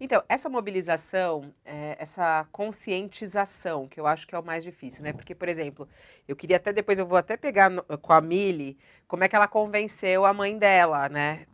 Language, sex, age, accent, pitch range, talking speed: Portuguese, female, 30-49, Brazilian, 175-245 Hz, 190 wpm